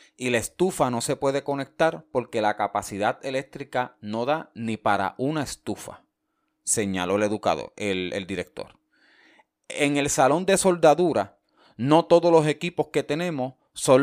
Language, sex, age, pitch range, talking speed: Spanish, male, 30-49, 105-150 Hz, 145 wpm